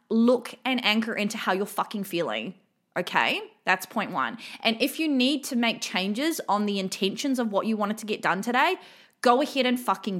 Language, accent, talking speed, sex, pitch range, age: English, Australian, 200 wpm, female, 215-285 Hz, 20-39